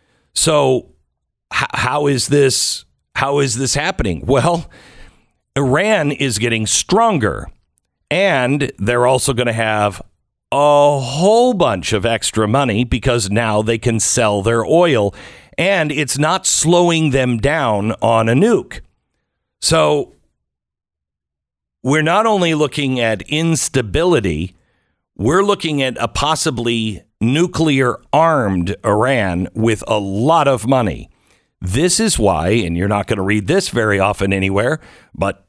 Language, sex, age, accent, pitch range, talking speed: English, male, 50-69, American, 105-145 Hz, 125 wpm